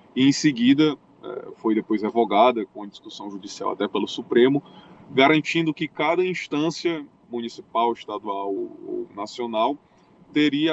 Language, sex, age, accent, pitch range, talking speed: Portuguese, male, 20-39, Brazilian, 115-160 Hz, 115 wpm